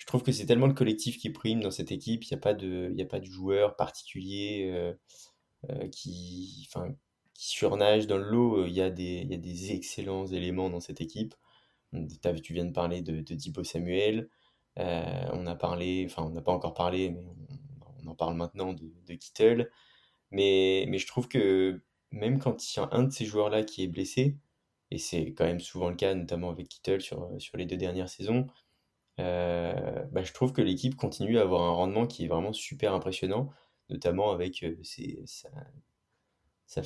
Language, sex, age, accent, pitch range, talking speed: French, male, 20-39, French, 90-110 Hz, 200 wpm